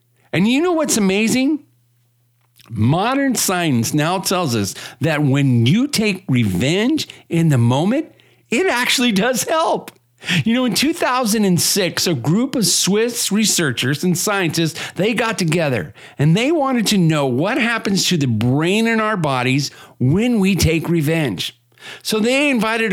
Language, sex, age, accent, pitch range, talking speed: English, male, 50-69, American, 145-220 Hz, 145 wpm